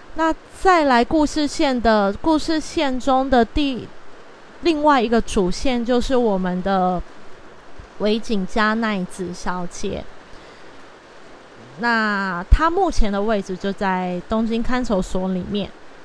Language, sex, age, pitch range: Chinese, female, 20-39, 195-270 Hz